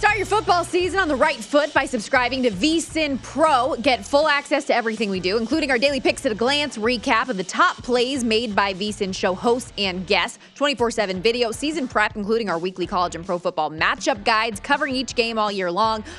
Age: 20-39